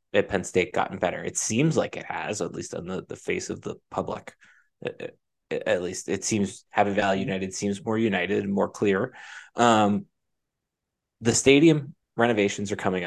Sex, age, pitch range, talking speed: male, 20-39, 105-135 Hz, 185 wpm